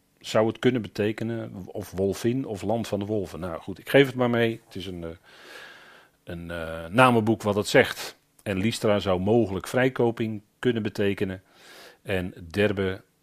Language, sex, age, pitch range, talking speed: Dutch, male, 40-59, 95-125 Hz, 170 wpm